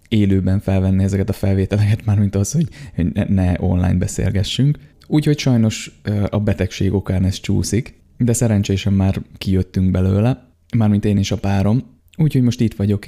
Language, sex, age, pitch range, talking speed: Hungarian, male, 20-39, 95-115 Hz, 155 wpm